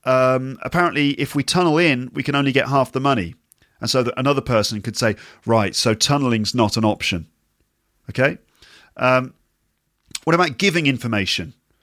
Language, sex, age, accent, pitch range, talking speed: English, male, 40-59, British, 115-155 Hz, 160 wpm